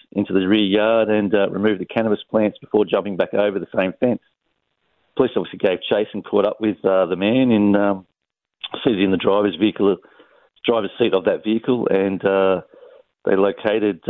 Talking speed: 185 wpm